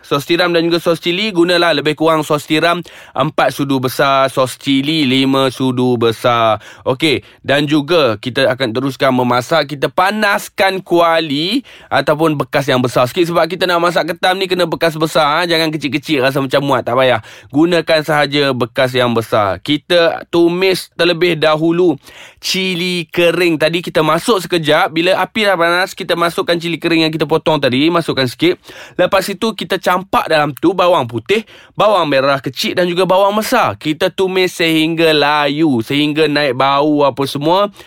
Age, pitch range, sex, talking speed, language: 20-39, 145-175 Hz, male, 165 wpm, Malay